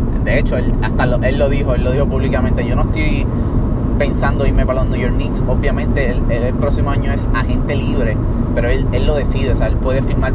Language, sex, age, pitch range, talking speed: Spanish, male, 20-39, 110-125 Hz, 240 wpm